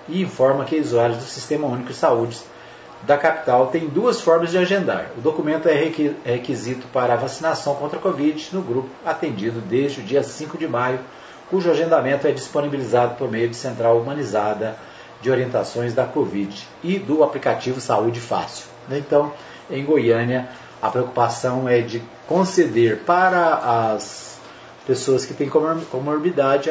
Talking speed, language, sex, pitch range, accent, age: 150 wpm, Portuguese, male, 120-160 Hz, Brazilian, 30-49